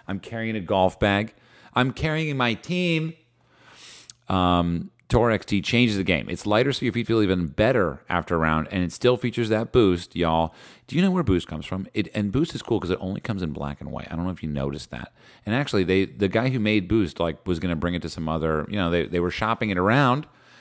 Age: 40-59